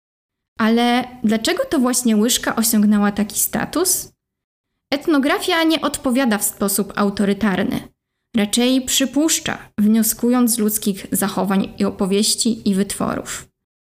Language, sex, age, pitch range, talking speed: Polish, female, 20-39, 215-275 Hz, 105 wpm